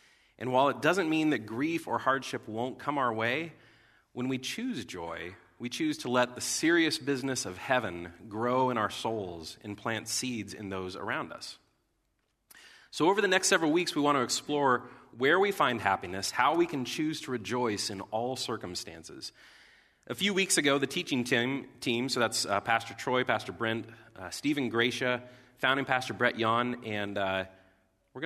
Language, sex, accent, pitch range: English, male, American, 105-135 Hz